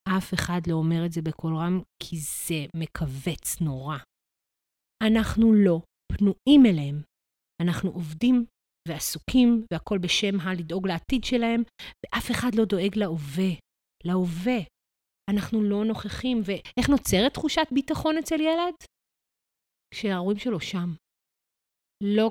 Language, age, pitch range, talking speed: Hebrew, 30-49, 170-220 Hz, 115 wpm